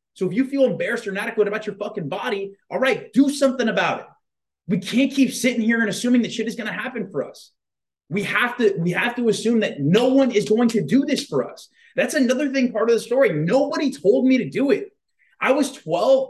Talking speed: 240 wpm